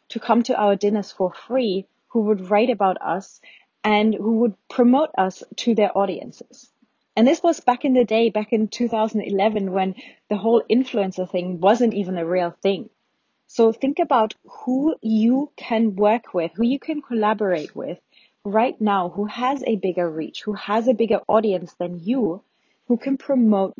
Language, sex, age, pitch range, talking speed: English, female, 30-49, 190-240 Hz, 175 wpm